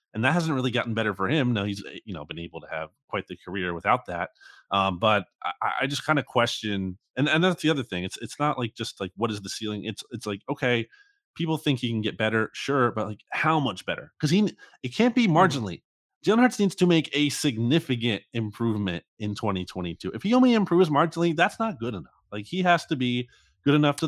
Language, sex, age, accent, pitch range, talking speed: English, male, 30-49, American, 105-155 Hz, 235 wpm